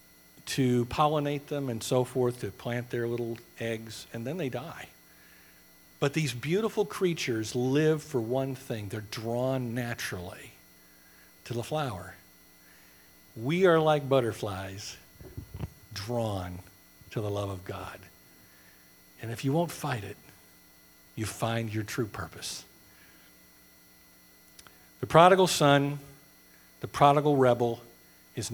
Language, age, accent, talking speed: English, 50-69, American, 120 wpm